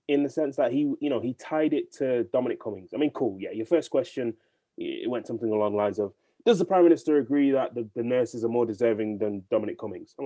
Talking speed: 250 wpm